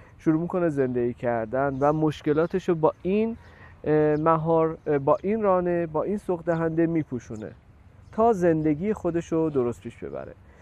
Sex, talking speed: male, 130 wpm